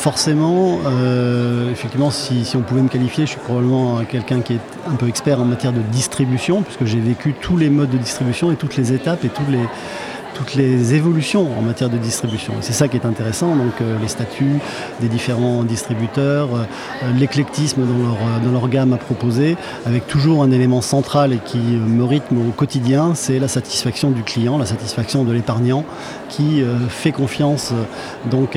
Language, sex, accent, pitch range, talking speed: French, male, French, 120-140 Hz, 190 wpm